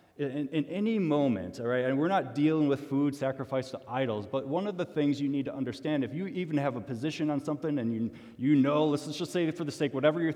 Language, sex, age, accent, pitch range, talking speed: English, male, 30-49, American, 120-155 Hz, 265 wpm